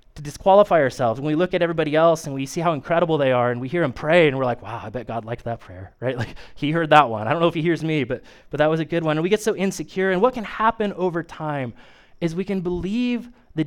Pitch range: 140-175 Hz